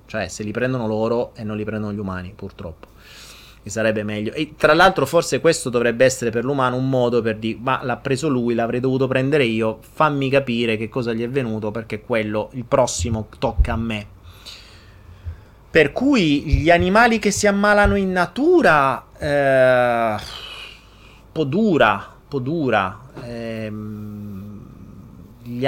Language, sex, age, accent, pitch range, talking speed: Italian, male, 30-49, native, 110-140 Hz, 150 wpm